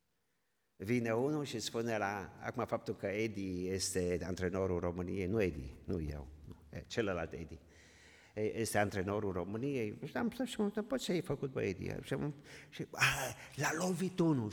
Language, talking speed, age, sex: Romanian, 150 wpm, 50-69, male